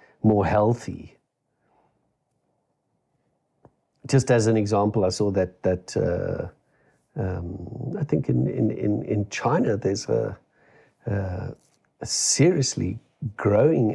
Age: 50-69